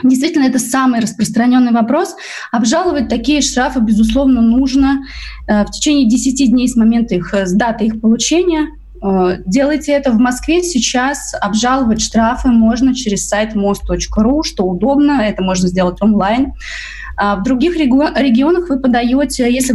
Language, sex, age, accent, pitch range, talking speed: Russian, female, 20-39, native, 205-270 Hz, 135 wpm